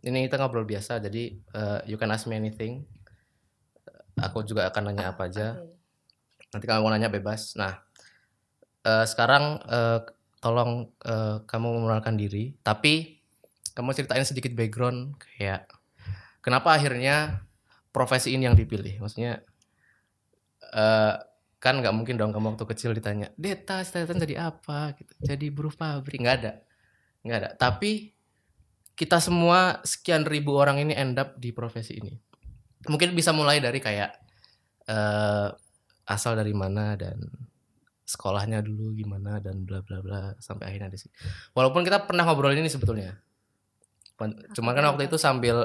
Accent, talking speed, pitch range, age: native, 140 wpm, 105-135 Hz, 20-39